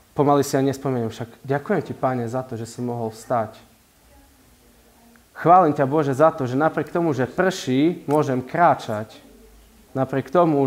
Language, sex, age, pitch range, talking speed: Slovak, male, 20-39, 120-155 Hz, 165 wpm